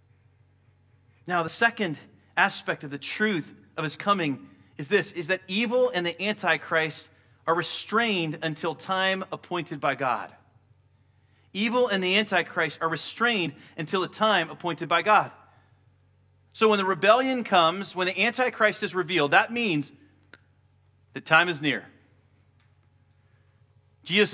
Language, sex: English, male